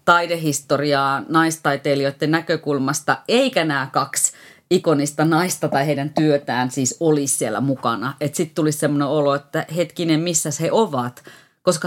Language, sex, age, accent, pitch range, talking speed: Finnish, female, 30-49, native, 150-200 Hz, 130 wpm